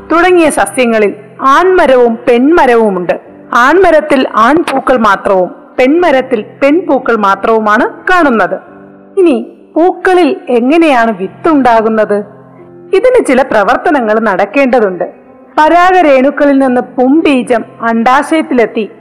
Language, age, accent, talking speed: Malayalam, 50-69, native, 75 wpm